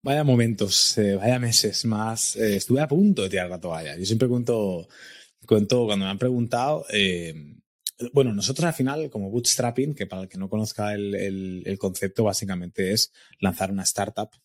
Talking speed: 185 wpm